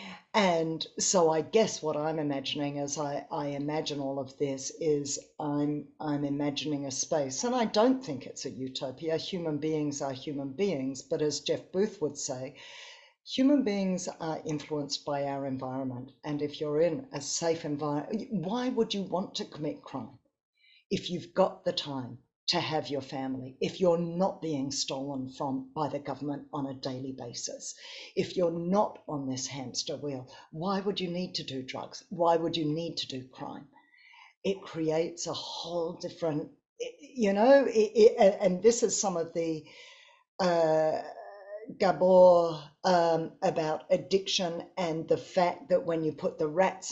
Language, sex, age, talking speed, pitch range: English, female, 50-69, 170 wpm, 145-185 Hz